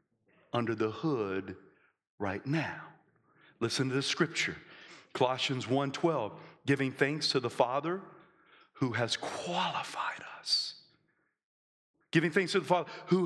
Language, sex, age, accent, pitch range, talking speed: English, male, 40-59, American, 115-170 Hz, 120 wpm